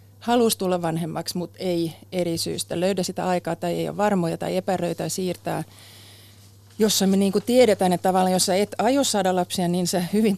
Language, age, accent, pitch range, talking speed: Finnish, 30-49, native, 170-205 Hz, 185 wpm